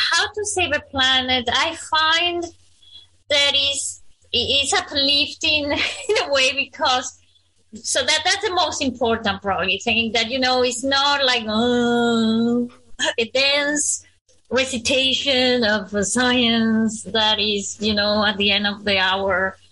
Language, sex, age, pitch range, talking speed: English, female, 20-39, 210-275 Hz, 140 wpm